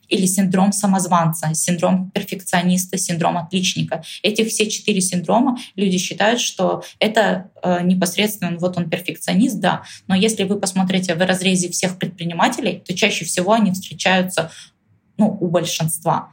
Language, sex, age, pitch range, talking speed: Russian, female, 20-39, 170-200 Hz, 130 wpm